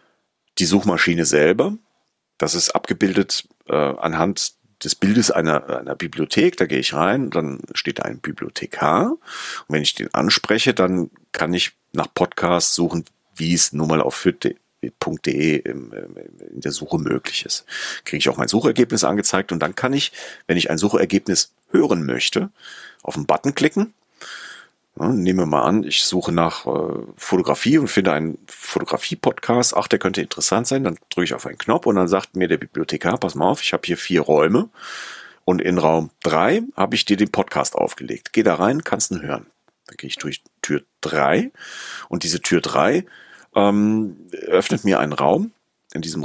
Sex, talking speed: male, 175 wpm